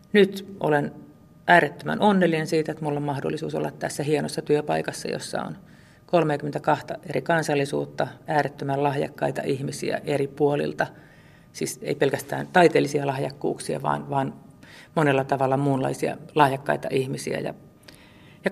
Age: 40-59